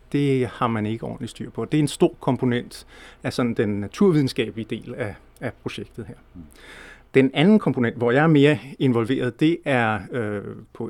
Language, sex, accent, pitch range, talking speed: Danish, male, native, 115-140 Hz, 170 wpm